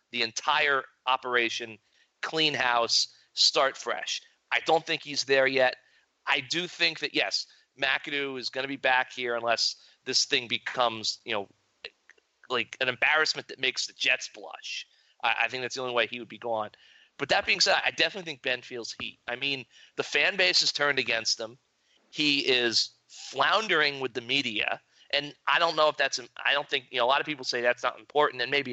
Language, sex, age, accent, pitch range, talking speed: English, male, 30-49, American, 125-150 Hz, 200 wpm